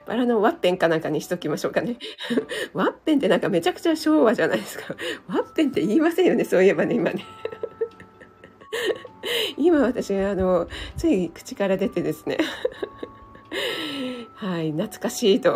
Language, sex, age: Japanese, female, 40-59